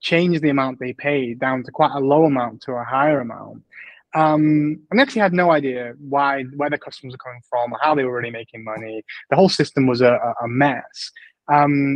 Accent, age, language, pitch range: British, 20-39, English, 130-165 Hz